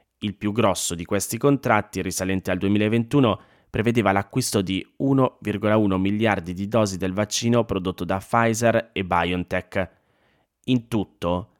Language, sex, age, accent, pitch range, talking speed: Italian, male, 20-39, native, 95-110 Hz, 130 wpm